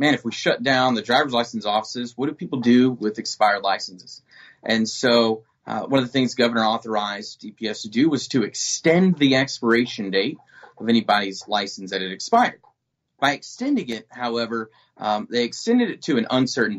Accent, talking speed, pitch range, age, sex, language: American, 180 wpm, 110-145 Hz, 30-49, male, English